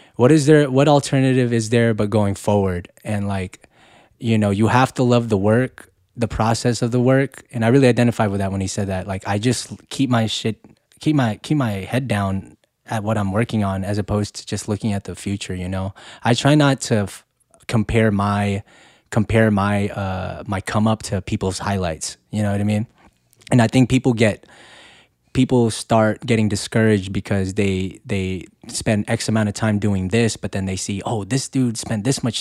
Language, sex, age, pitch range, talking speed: English, male, 20-39, 100-120 Hz, 205 wpm